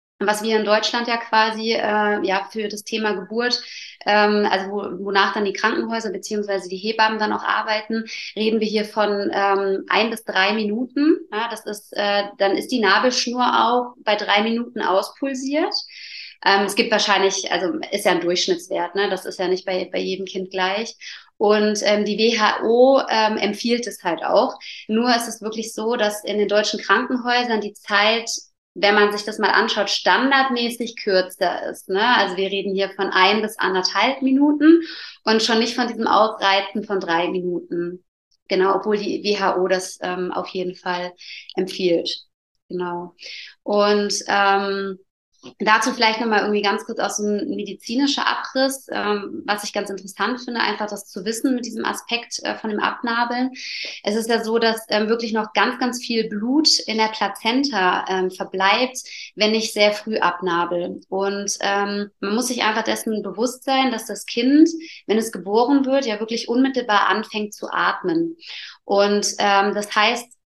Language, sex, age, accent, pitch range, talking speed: German, female, 30-49, German, 195-230 Hz, 175 wpm